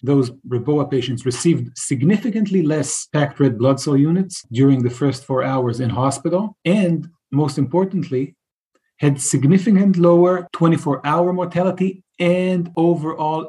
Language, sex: English, male